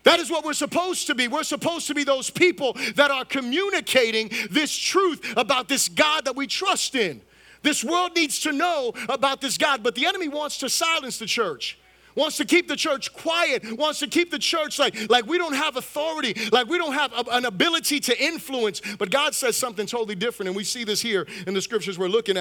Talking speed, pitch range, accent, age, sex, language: 220 wpm, 215-295 Hz, American, 30-49, male, English